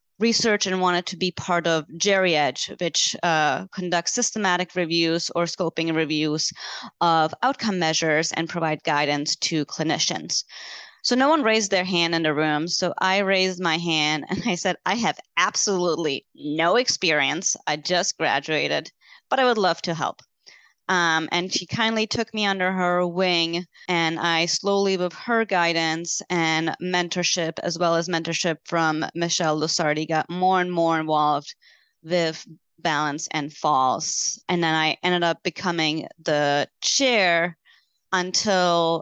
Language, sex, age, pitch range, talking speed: English, female, 20-39, 155-180 Hz, 150 wpm